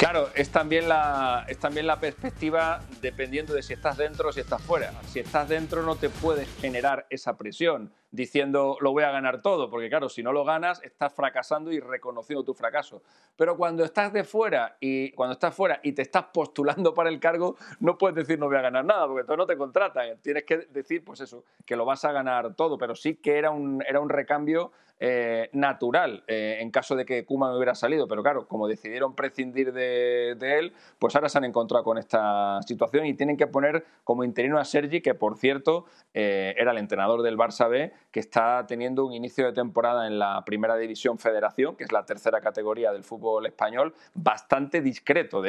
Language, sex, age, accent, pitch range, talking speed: Spanish, male, 40-59, Spanish, 120-150 Hz, 210 wpm